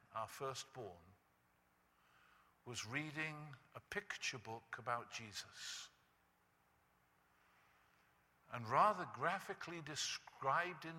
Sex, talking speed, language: male, 75 wpm, English